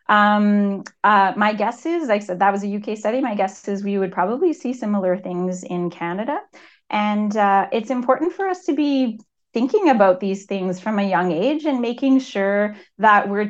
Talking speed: 200 wpm